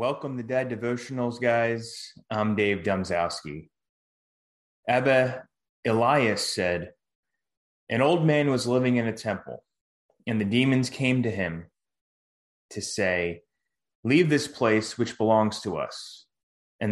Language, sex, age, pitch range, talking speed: English, male, 20-39, 110-135 Hz, 125 wpm